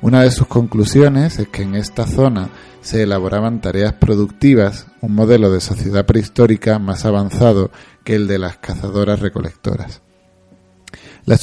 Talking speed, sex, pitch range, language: 135 wpm, male, 95-115 Hz, Spanish